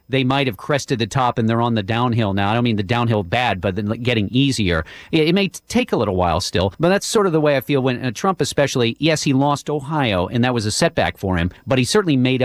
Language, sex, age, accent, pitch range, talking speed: English, male, 40-59, American, 105-140 Hz, 275 wpm